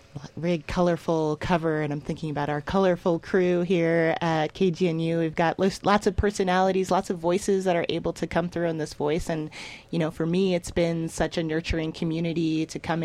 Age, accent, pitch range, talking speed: 30-49, American, 160-180 Hz, 200 wpm